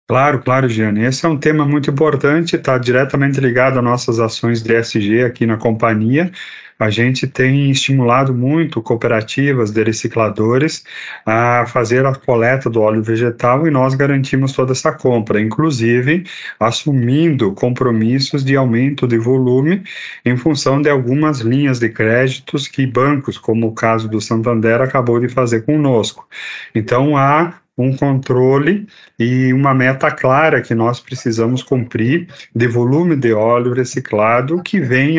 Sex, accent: male, Brazilian